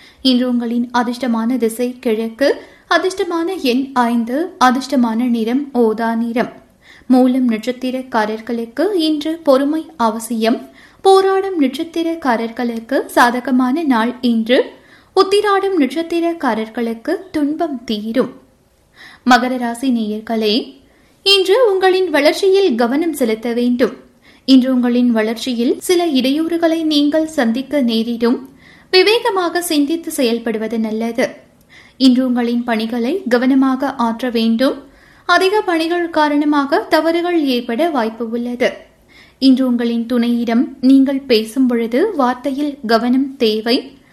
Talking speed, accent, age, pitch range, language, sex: 90 wpm, native, 20-39, 240-315 Hz, Tamil, female